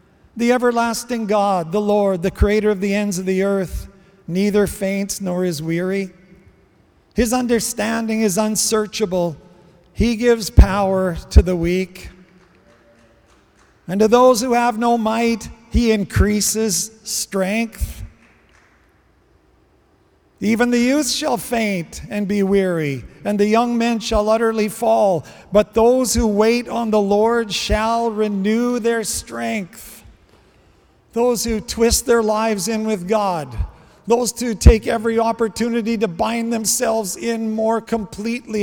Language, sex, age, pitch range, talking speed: English, male, 50-69, 185-225 Hz, 130 wpm